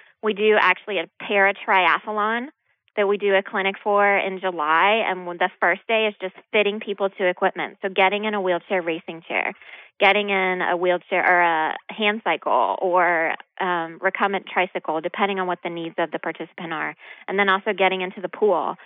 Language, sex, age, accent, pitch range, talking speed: English, female, 20-39, American, 175-200 Hz, 190 wpm